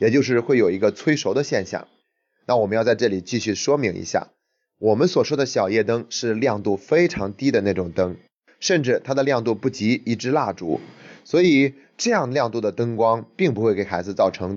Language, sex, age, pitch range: Chinese, male, 30-49, 100-135 Hz